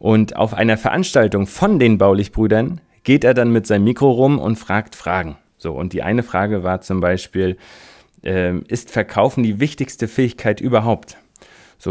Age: 30-49